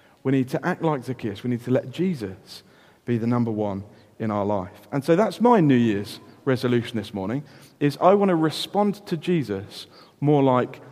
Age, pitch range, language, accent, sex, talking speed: 40-59, 105-155 Hz, English, British, male, 200 wpm